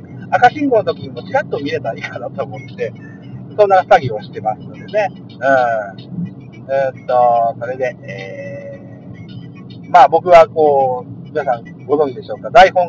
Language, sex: Japanese, male